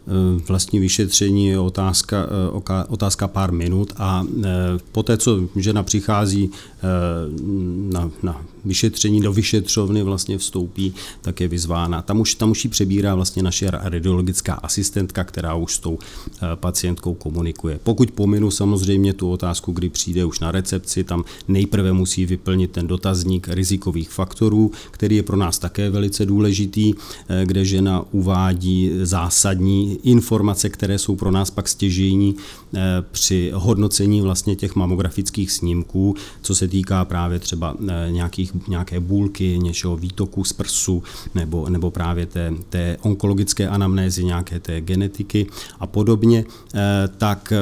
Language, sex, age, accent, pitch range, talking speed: Czech, male, 40-59, native, 90-100 Hz, 130 wpm